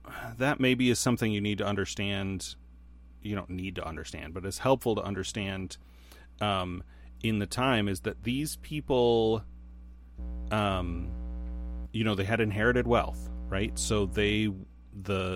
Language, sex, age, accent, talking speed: English, male, 30-49, American, 145 wpm